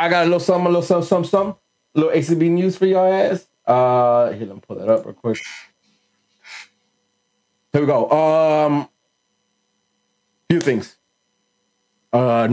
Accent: American